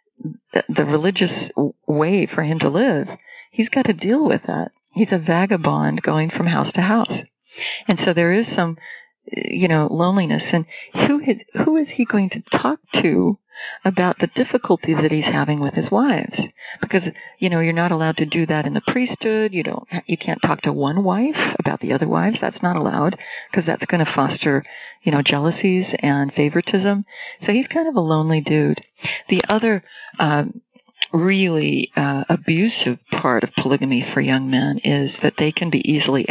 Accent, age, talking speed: American, 40-59, 185 wpm